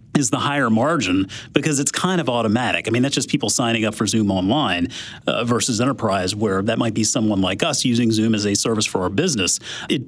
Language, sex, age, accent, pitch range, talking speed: English, male, 40-59, American, 125-155 Hz, 220 wpm